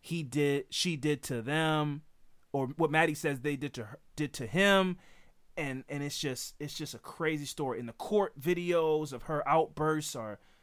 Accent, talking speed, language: American, 190 wpm, English